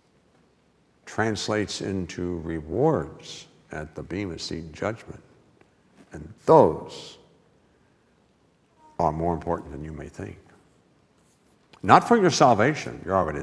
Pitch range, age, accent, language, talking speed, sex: 85-105 Hz, 60-79, American, English, 105 wpm, male